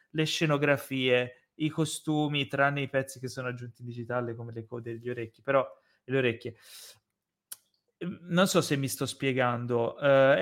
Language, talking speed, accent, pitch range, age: Italian, 160 wpm, native, 120-150 Hz, 20-39